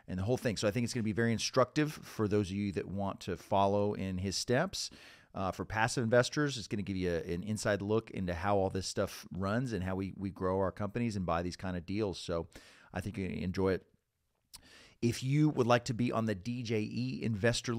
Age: 40-59